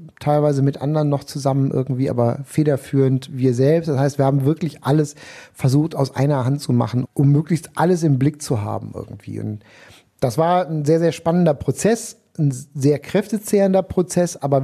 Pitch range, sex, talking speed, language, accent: 120-150 Hz, male, 175 wpm, German, German